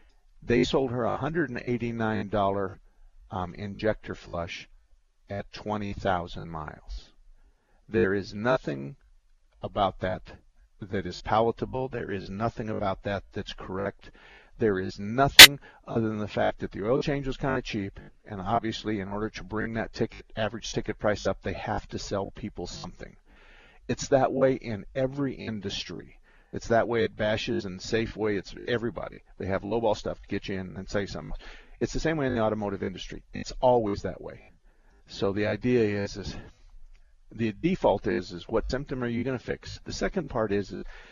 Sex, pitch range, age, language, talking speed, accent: male, 100-120 Hz, 50-69, English, 175 wpm, American